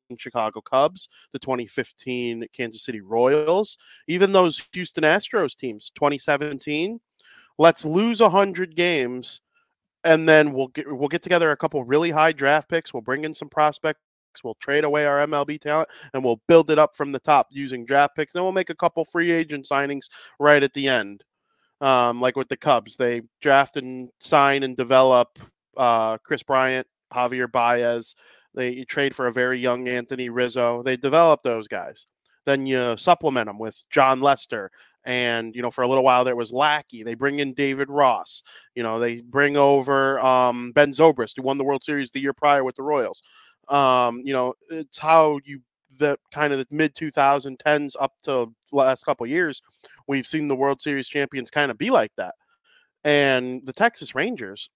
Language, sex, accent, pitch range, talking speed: English, male, American, 125-155 Hz, 180 wpm